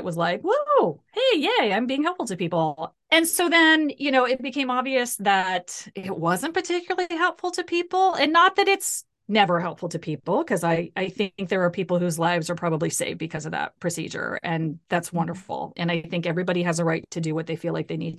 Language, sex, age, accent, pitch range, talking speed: English, female, 30-49, American, 165-220 Hz, 220 wpm